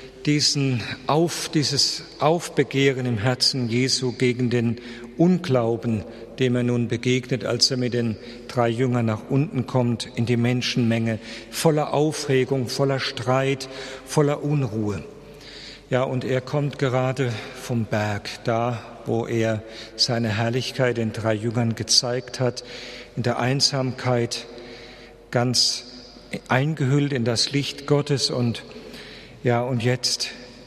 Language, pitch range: German, 120-140 Hz